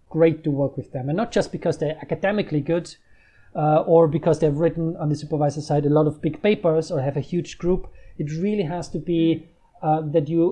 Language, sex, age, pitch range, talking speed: English, male, 30-49, 145-180 Hz, 220 wpm